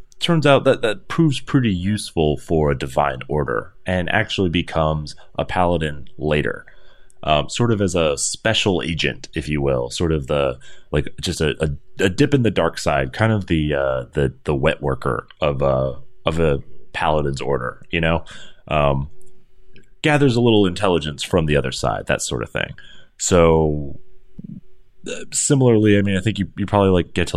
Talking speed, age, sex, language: 180 wpm, 30-49, male, English